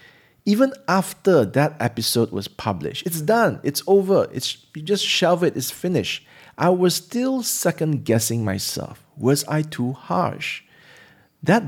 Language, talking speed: English, 140 wpm